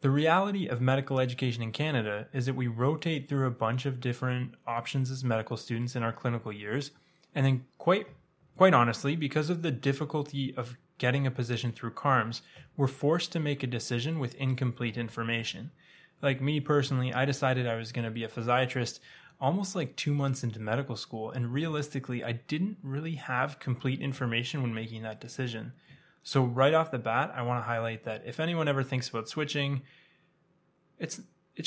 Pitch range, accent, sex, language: 125-160 Hz, American, male, English